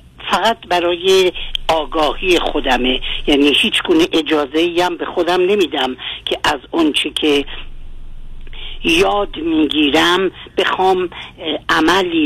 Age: 50-69